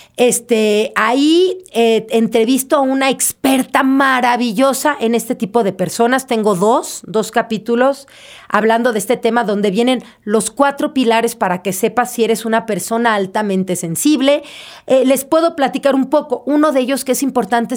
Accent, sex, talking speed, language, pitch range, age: Mexican, female, 160 wpm, English, 225-270 Hz, 40-59